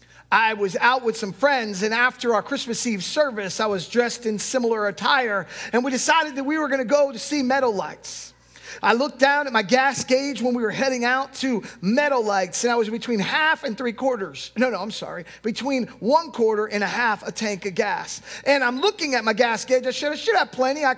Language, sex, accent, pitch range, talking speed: English, male, American, 235-295 Hz, 235 wpm